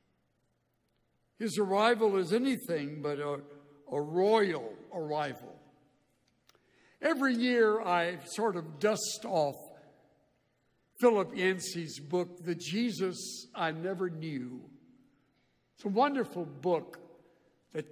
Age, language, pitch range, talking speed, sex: 60-79, English, 150-210 Hz, 95 wpm, male